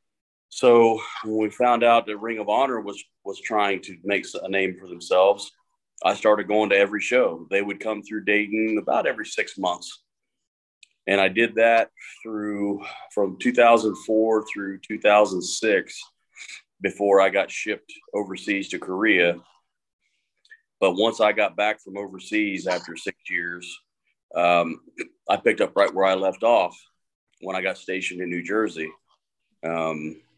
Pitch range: 95-110 Hz